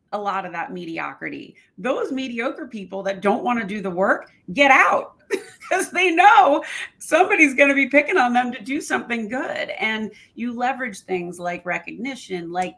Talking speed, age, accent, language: 175 wpm, 30-49, American, English